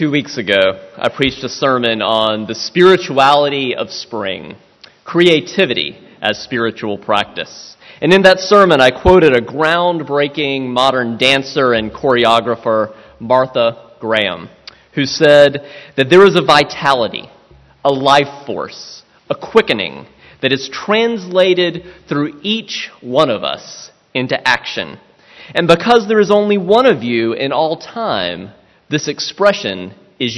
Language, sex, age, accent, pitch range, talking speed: English, male, 30-49, American, 125-180 Hz, 130 wpm